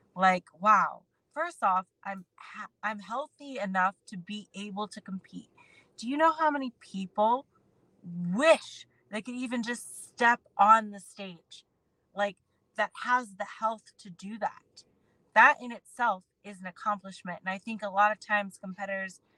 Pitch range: 190-220 Hz